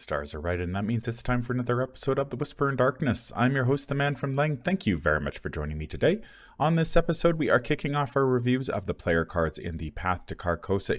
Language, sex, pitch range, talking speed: English, male, 95-150 Hz, 270 wpm